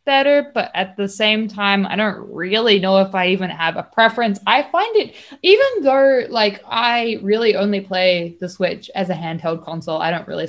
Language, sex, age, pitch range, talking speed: English, female, 20-39, 170-225 Hz, 200 wpm